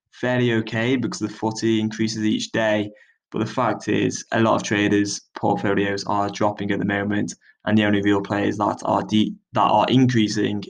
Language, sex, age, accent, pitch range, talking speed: English, male, 20-39, British, 105-115 Hz, 185 wpm